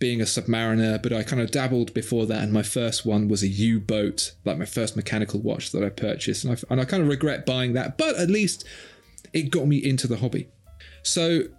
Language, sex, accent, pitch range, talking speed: English, male, British, 110-145 Hz, 230 wpm